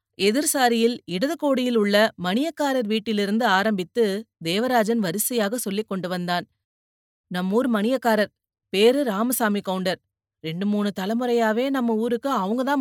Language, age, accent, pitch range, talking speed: Tamil, 30-49, native, 180-245 Hz, 110 wpm